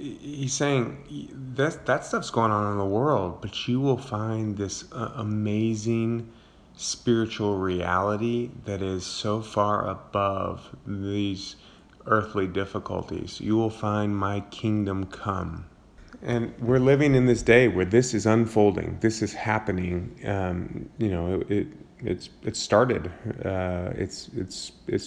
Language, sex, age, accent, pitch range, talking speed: English, male, 30-49, American, 95-110 Hz, 135 wpm